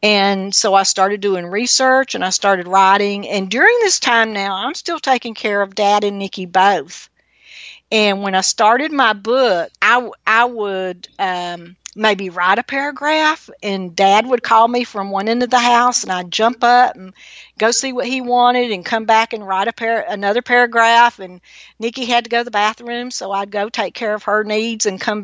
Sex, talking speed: female, 200 wpm